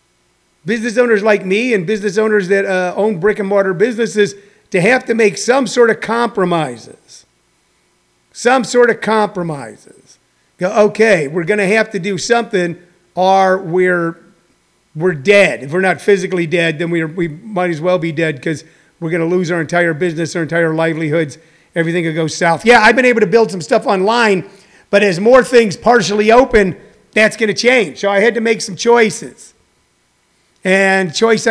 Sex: male